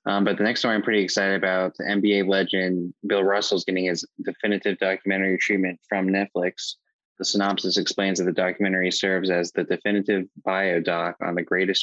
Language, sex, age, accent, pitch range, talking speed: English, male, 20-39, American, 90-100 Hz, 185 wpm